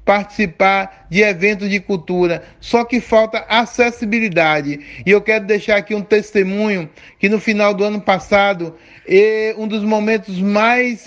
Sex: male